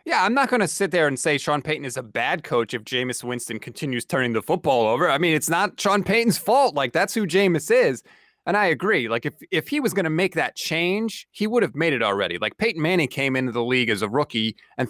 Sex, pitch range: male, 125-190 Hz